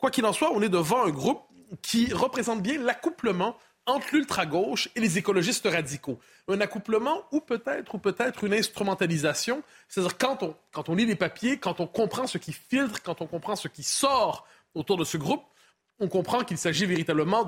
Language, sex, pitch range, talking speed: French, male, 160-235 Hz, 190 wpm